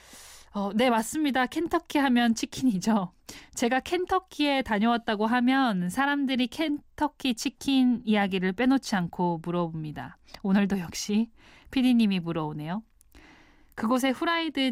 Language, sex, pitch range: Korean, female, 195-260 Hz